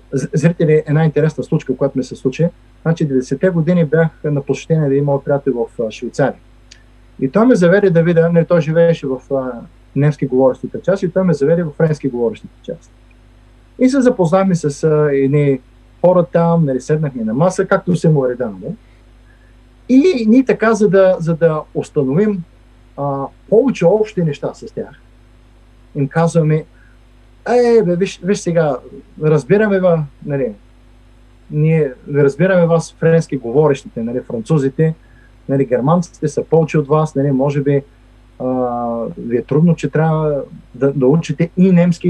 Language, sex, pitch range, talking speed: Bulgarian, male, 125-170 Hz, 150 wpm